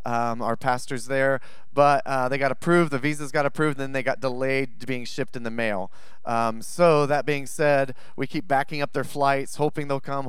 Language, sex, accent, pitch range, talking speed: English, male, American, 125-150 Hz, 220 wpm